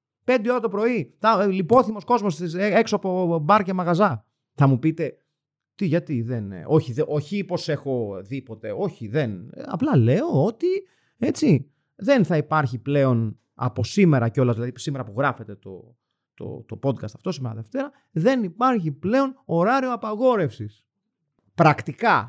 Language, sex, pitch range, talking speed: Greek, male, 130-210 Hz, 140 wpm